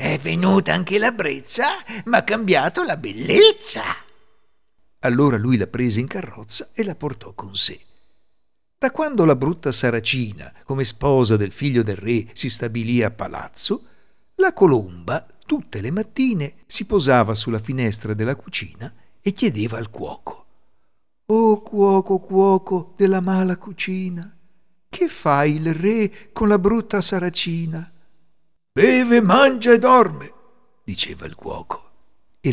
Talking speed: 135 wpm